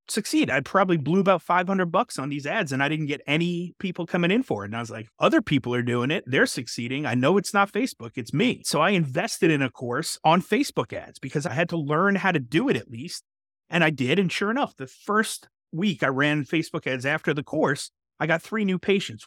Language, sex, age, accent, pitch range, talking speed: English, male, 30-49, American, 125-180 Hz, 245 wpm